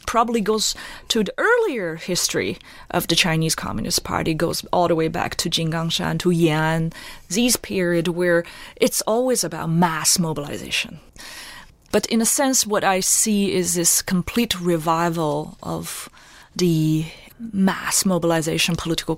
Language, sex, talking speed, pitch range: English, female, 140 wpm, 170-220 Hz